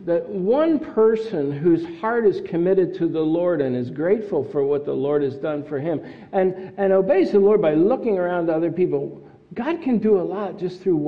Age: 60-79